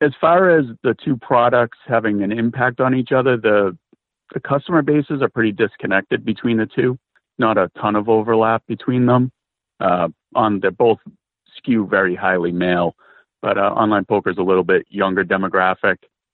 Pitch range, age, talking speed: 90-115 Hz, 40-59, 175 wpm